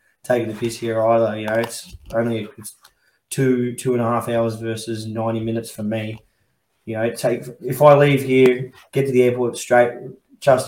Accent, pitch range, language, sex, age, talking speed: Australian, 115-125 Hz, English, male, 20-39, 185 wpm